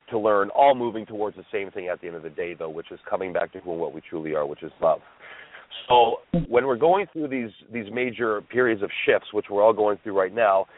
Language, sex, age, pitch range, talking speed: English, male, 40-59, 110-135 Hz, 260 wpm